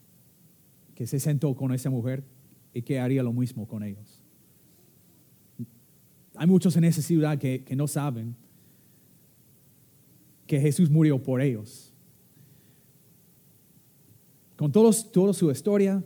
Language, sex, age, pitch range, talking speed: English, male, 30-49, 125-165 Hz, 120 wpm